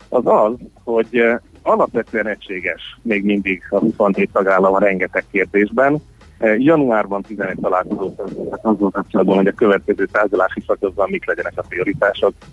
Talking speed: 125 wpm